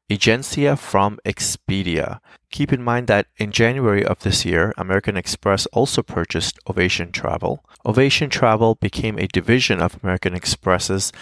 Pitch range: 95-115 Hz